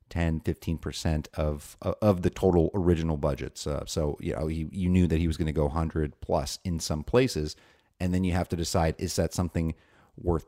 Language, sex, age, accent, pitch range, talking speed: English, male, 30-49, American, 80-100 Hz, 205 wpm